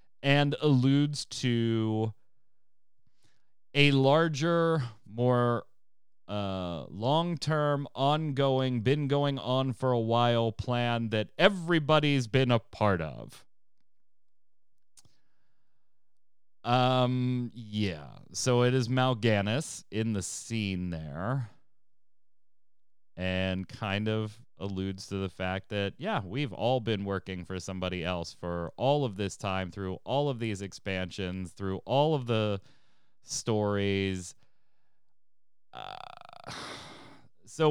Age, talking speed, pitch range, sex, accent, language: 30-49, 105 wpm, 95-130 Hz, male, American, English